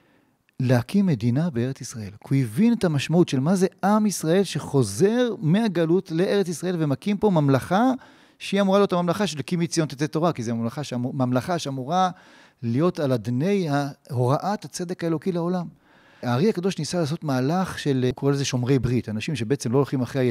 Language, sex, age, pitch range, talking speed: Hebrew, male, 40-59, 130-190 Hz, 165 wpm